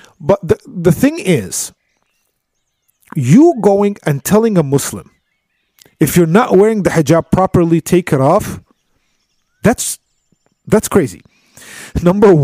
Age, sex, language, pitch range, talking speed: 40-59, male, English, 140-200 Hz, 120 wpm